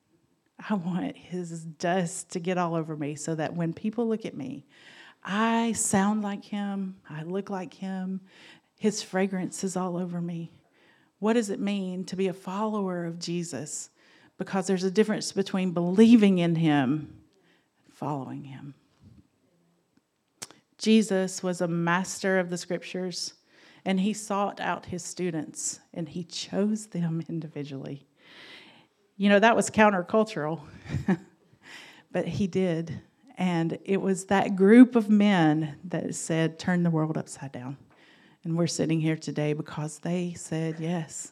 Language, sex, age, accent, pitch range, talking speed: English, female, 40-59, American, 165-200 Hz, 145 wpm